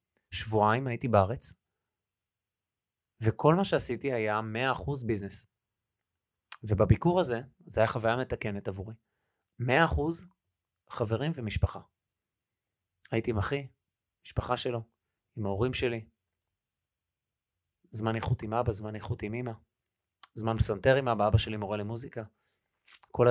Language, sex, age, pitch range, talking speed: Hebrew, male, 30-49, 105-130 Hz, 120 wpm